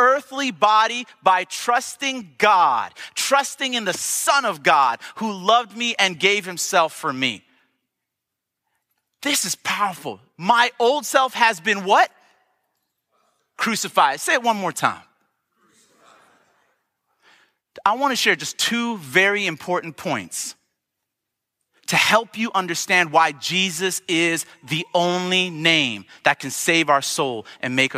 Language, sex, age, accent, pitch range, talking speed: English, male, 30-49, American, 165-235 Hz, 130 wpm